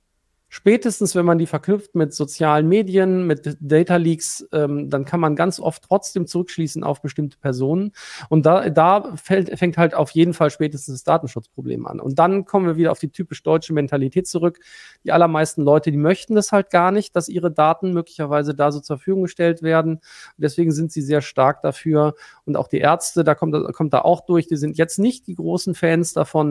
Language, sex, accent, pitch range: German, male, German, 145-175 Hz